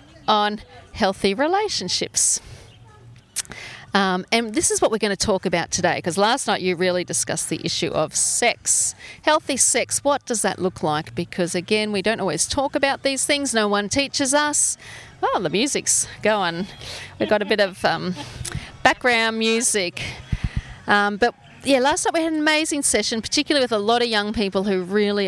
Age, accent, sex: 40-59, Australian, female